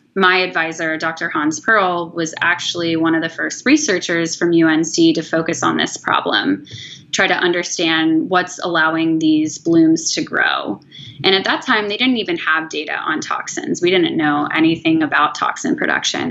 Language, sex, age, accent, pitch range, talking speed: English, female, 20-39, American, 165-255 Hz, 170 wpm